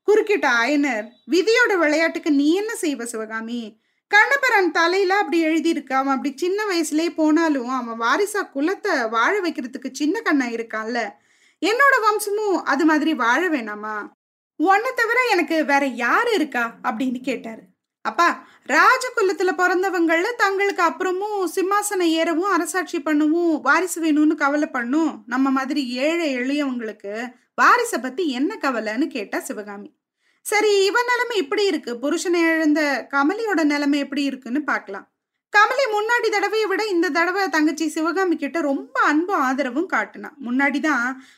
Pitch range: 275-385 Hz